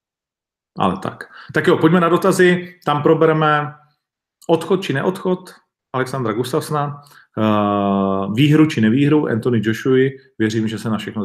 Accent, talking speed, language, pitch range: native, 130 wpm, Czech, 110-150 Hz